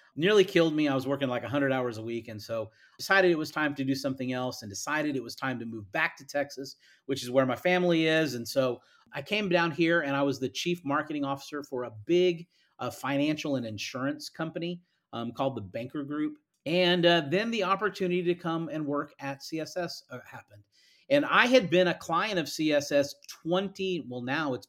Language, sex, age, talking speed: English, male, 40-59, 210 wpm